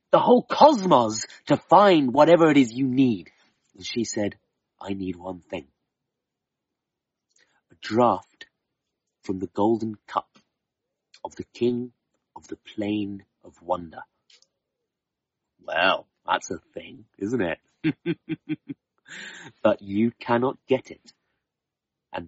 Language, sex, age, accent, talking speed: English, male, 40-59, British, 115 wpm